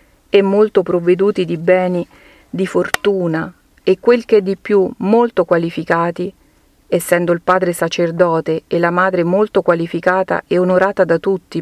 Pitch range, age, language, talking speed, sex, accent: 175-205 Hz, 40-59, Italian, 145 wpm, female, native